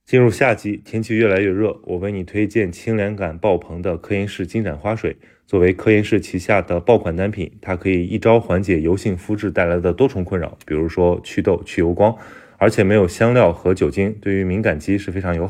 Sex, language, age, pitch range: male, Chinese, 20-39, 90-105 Hz